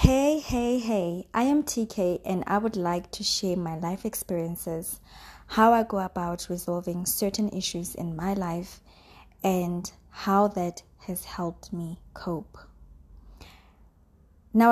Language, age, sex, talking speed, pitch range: English, 20-39, female, 135 wpm, 165-200 Hz